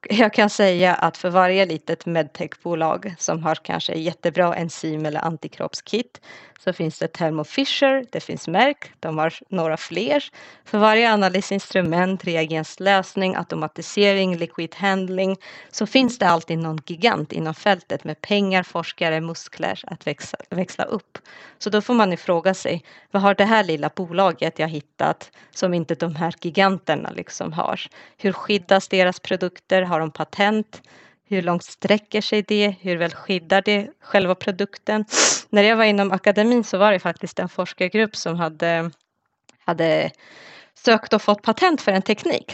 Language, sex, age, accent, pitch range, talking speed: Swedish, female, 30-49, native, 175-225 Hz, 155 wpm